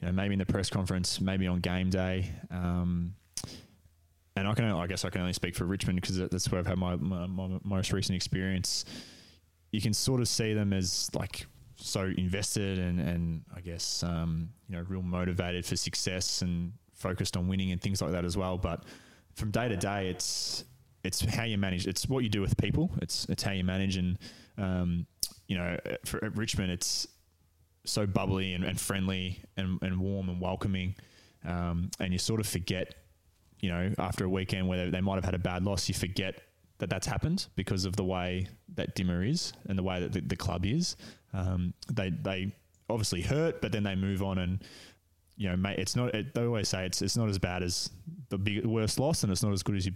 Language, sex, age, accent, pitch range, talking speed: English, male, 20-39, Australian, 90-100 Hz, 215 wpm